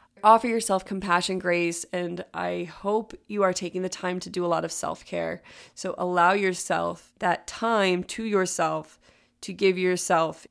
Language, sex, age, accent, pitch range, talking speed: English, female, 20-39, American, 170-185 Hz, 160 wpm